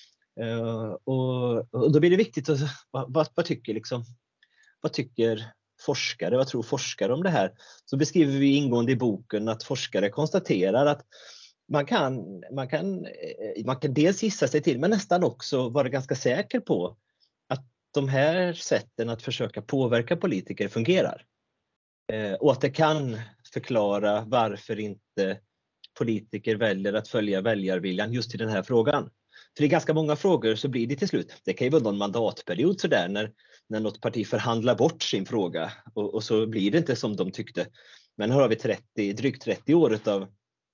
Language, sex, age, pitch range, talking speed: Swedish, male, 30-49, 105-145 Hz, 170 wpm